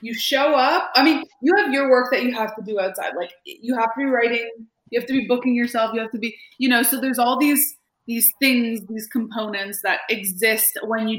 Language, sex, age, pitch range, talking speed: English, female, 20-39, 205-255 Hz, 240 wpm